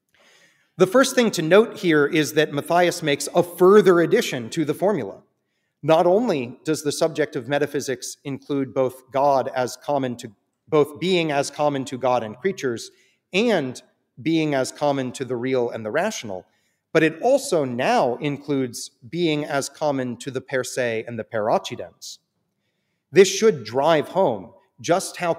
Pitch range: 130-170 Hz